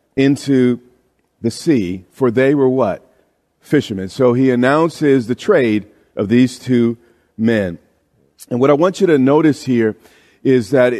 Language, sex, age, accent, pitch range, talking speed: English, male, 40-59, American, 110-135 Hz, 145 wpm